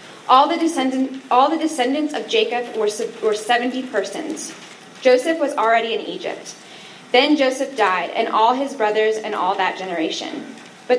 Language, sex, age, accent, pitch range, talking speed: English, female, 20-39, American, 220-275 Hz, 135 wpm